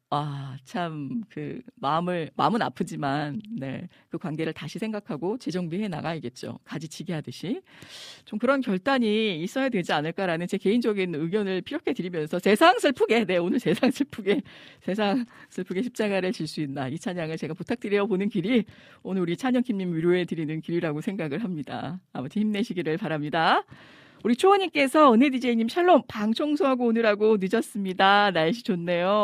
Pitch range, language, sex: 160-230 Hz, Korean, female